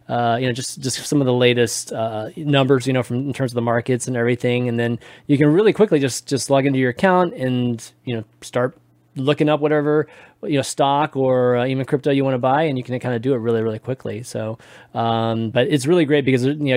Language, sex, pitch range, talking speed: English, male, 120-145 Hz, 250 wpm